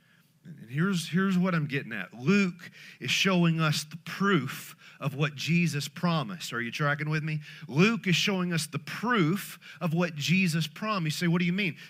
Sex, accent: male, American